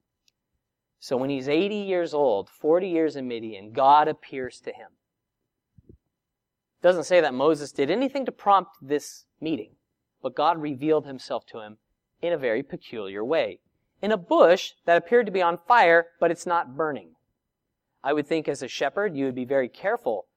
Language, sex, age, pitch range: English, male, 30-49, 130-185 Hz